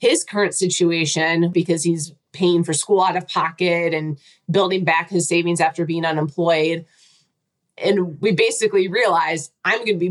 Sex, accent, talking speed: female, American, 160 wpm